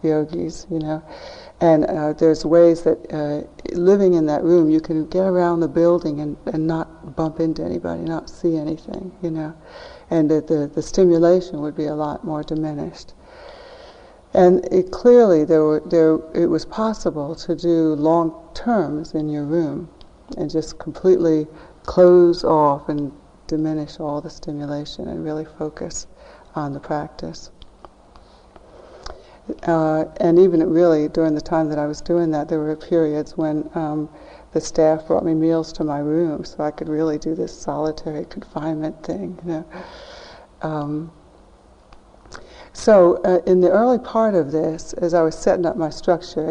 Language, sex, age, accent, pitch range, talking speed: English, female, 60-79, American, 155-170 Hz, 160 wpm